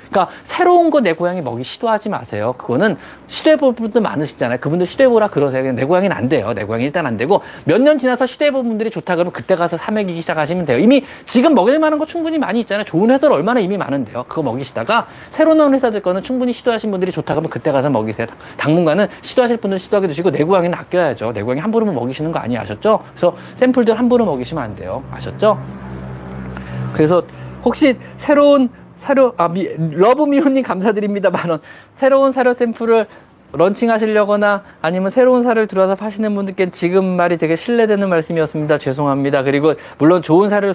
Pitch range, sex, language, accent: 135-215 Hz, male, Korean, native